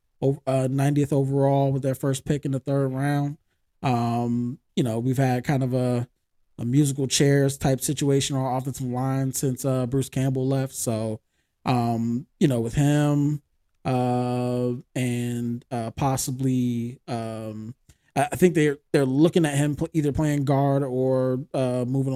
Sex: male